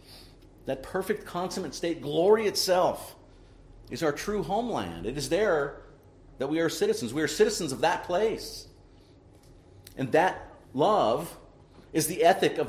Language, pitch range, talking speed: English, 95-155 Hz, 140 wpm